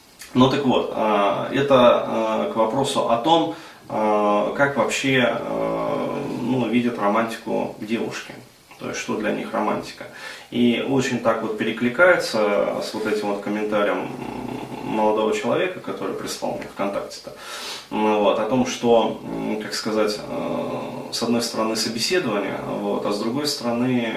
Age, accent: 20-39, native